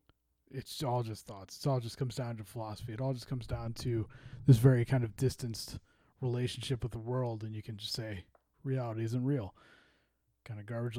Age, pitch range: 20-39, 110-130 Hz